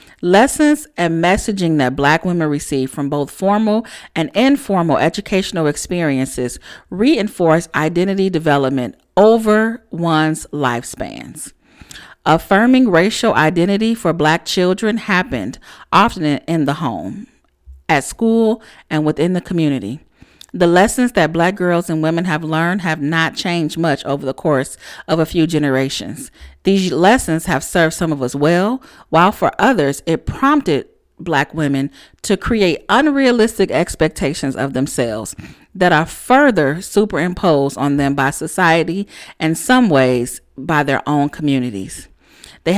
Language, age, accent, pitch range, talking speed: English, 40-59, American, 155-210 Hz, 130 wpm